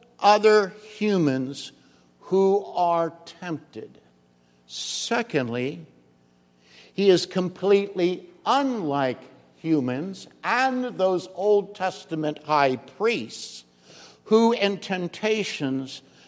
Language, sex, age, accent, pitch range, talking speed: English, male, 60-79, American, 135-205 Hz, 75 wpm